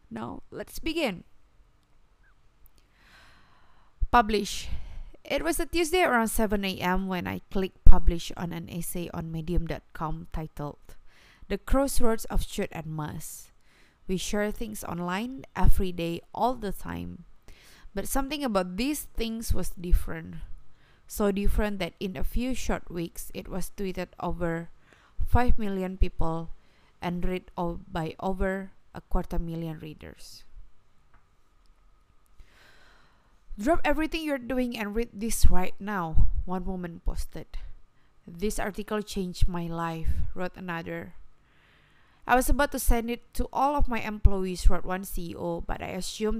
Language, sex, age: Indonesian, female, 20-39